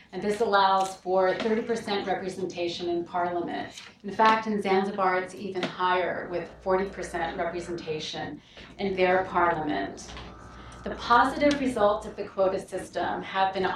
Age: 30-49